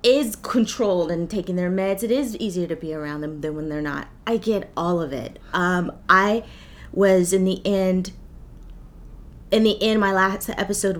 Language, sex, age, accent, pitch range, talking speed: English, female, 30-49, American, 160-190 Hz, 185 wpm